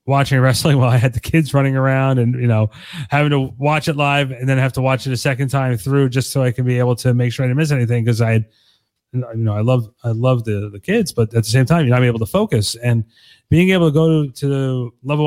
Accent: American